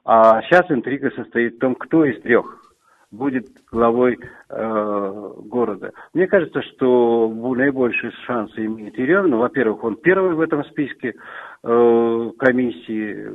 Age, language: 50-69, Russian